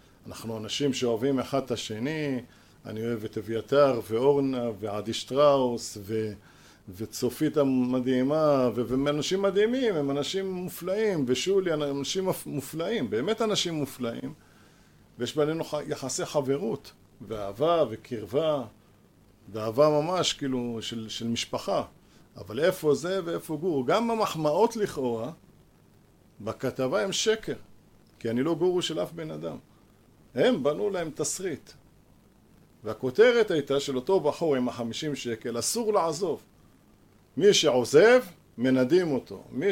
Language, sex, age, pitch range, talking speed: Hebrew, male, 50-69, 120-165 Hz, 120 wpm